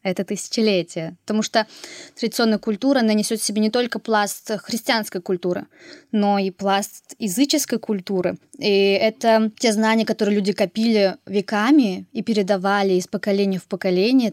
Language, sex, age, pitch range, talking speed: Russian, female, 20-39, 200-260 Hz, 135 wpm